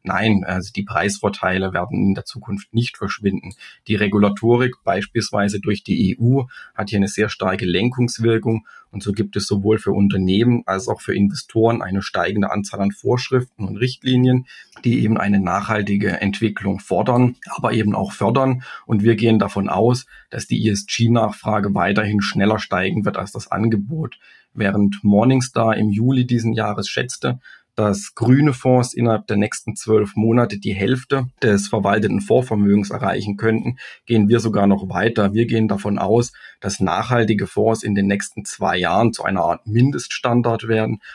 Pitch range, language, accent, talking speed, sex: 100-115 Hz, German, German, 160 wpm, male